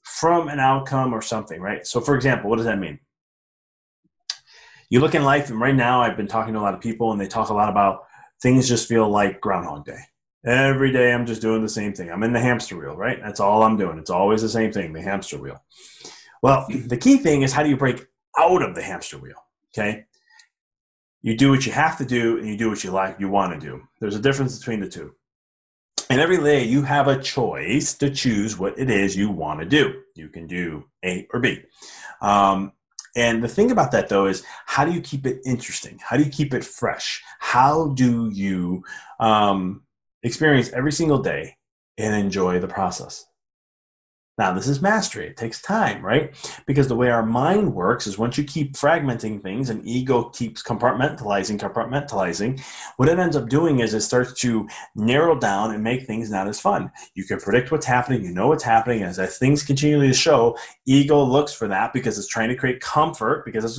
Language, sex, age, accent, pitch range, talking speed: English, male, 30-49, American, 110-135 Hz, 215 wpm